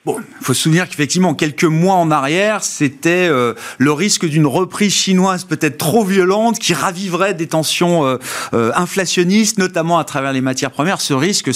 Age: 30-49